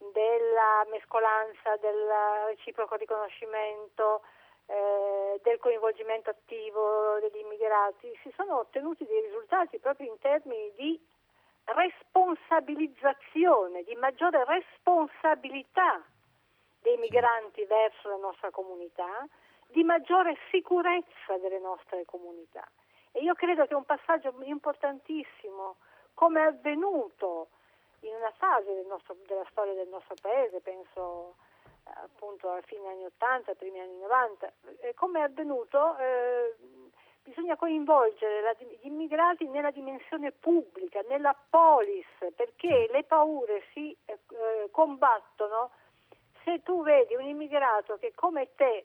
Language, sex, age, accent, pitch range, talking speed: Italian, female, 50-69, native, 215-320 Hz, 115 wpm